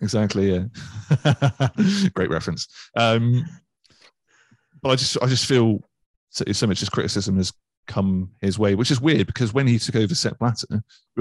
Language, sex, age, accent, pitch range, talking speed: English, male, 30-49, British, 100-120 Hz, 160 wpm